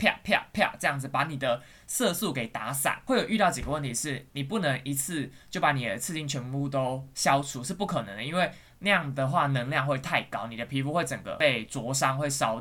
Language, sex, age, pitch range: Chinese, male, 20-39, 135-155 Hz